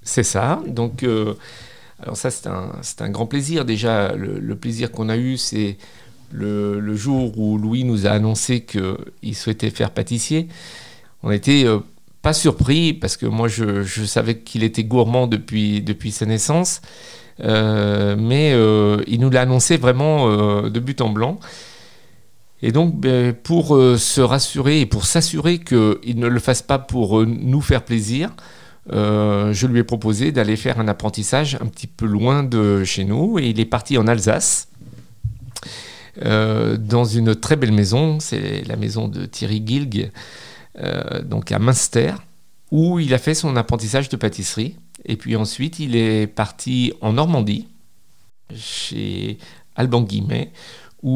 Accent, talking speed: French, 165 wpm